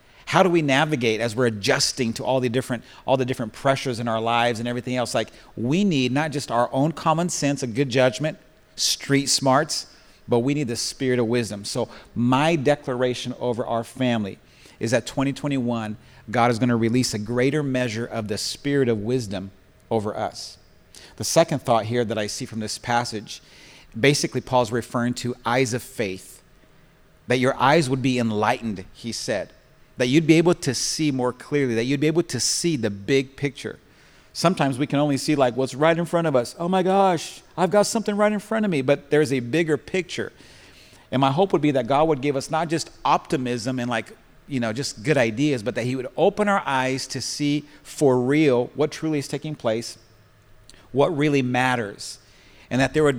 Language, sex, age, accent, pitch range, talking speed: English, male, 40-59, American, 120-145 Hz, 200 wpm